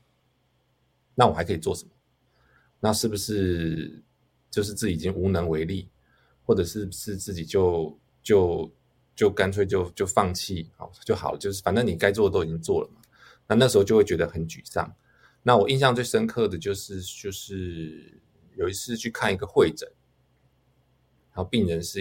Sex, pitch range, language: male, 80-105 Hz, Chinese